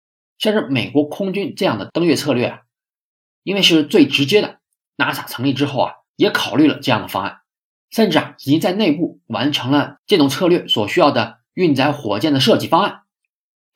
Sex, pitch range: male, 135-190 Hz